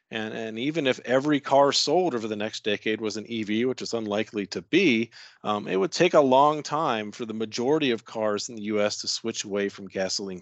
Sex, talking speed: male, 225 wpm